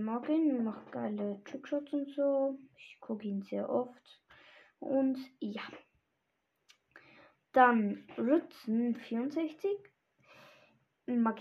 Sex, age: female, 10-29